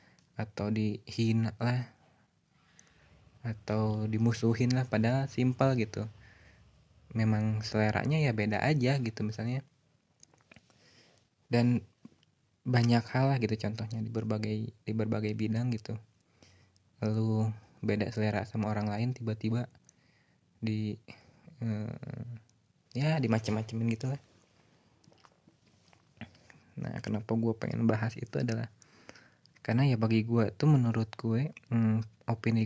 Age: 20-39